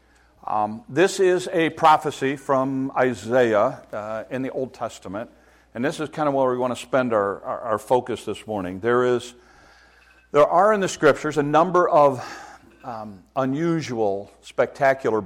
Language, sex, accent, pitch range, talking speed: English, male, American, 105-130 Hz, 160 wpm